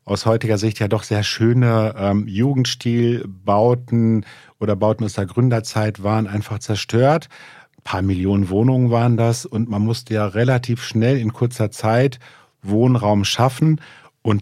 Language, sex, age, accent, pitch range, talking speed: German, male, 50-69, German, 100-120 Hz, 145 wpm